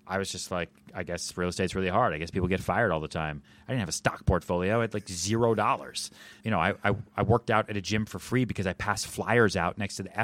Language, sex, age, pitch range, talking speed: English, male, 30-49, 95-120 Hz, 280 wpm